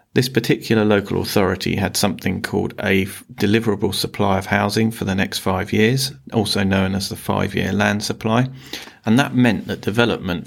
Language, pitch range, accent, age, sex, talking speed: English, 95-110 Hz, British, 30-49, male, 165 wpm